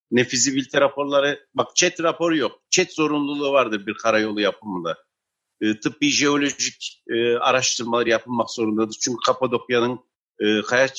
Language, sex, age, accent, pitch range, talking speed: Turkish, male, 60-79, native, 115-165 Hz, 125 wpm